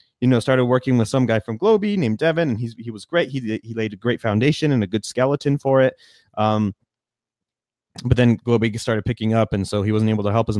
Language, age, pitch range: English, 30-49, 110-140 Hz